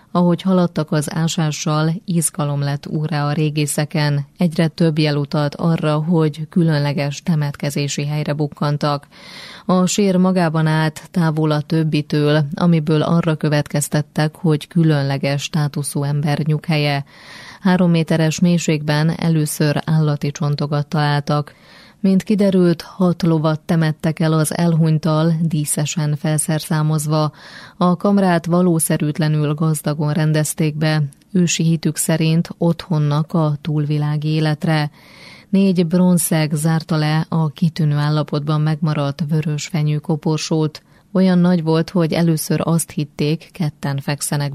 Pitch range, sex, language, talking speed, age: 150-170 Hz, female, Hungarian, 110 wpm, 20-39